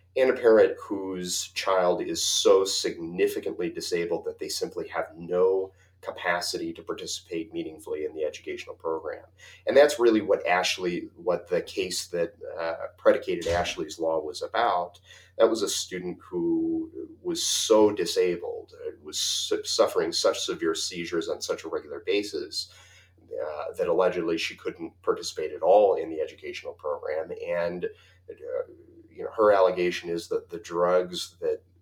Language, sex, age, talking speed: English, male, 30-49, 145 wpm